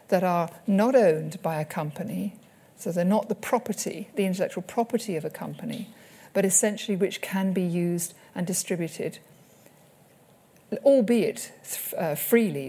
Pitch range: 175-225 Hz